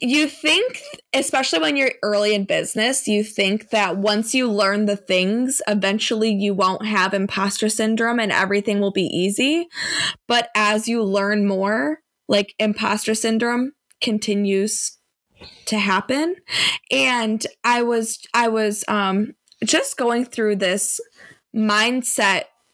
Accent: American